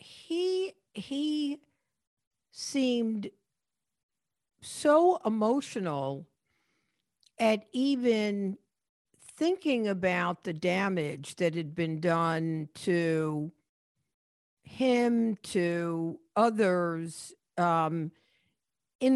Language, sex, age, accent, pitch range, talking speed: English, female, 50-69, American, 165-230 Hz, 65 wpm